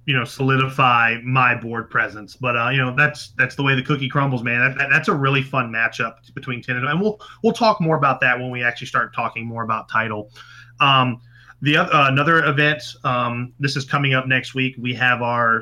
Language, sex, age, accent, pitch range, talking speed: English, male, 30-49, American, 120-150 Hz, 225 wpm